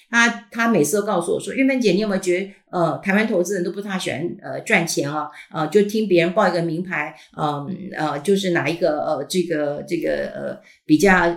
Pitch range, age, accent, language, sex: 175-250 Hz, 50-69, native, Chinese, female